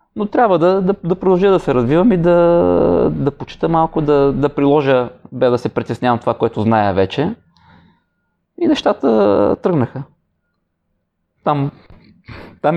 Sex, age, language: male, 20-39, Bulgarian